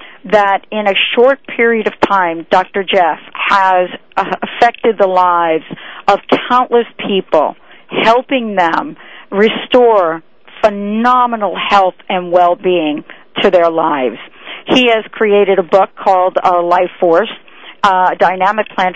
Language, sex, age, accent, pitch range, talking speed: English, female, 50-69, American, 180-220 Hz, 115 wpm